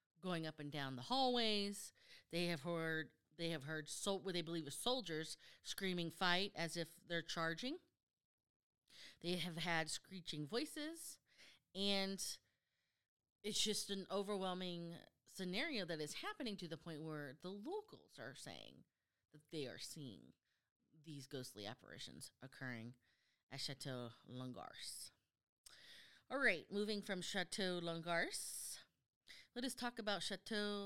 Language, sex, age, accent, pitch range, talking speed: English, female, 30-49, American, 155-200 Hz, 130 wpm